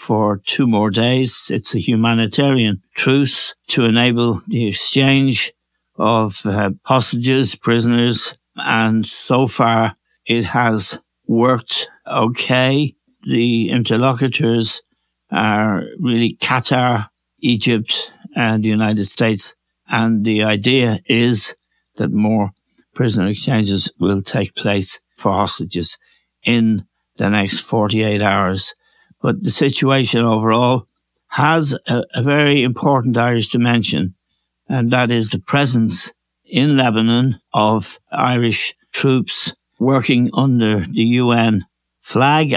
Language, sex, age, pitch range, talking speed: English, male, 60-79, 110-130 Hz, 110 wpm